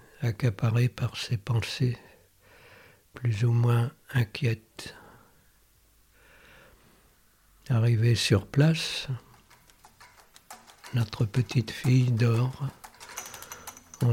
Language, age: French, 60-79